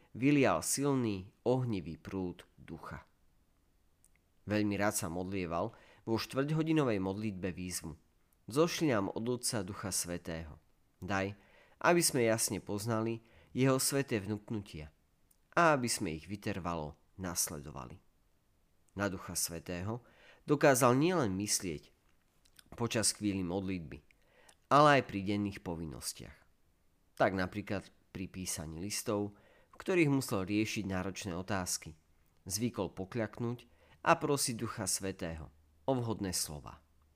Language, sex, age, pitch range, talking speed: Slovak, male, 40-59, 85-115 Hz, 105 wpm